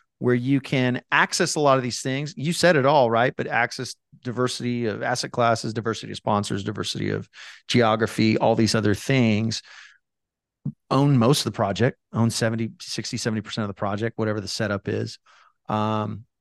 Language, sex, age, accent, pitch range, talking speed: English, male, 40-59, American, 110-130 Hz, 170 wpm